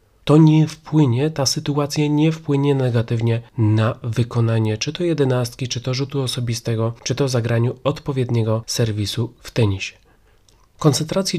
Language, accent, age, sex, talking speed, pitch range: Polish, native, 30-49, male, 130 wpm, 120-155 Hz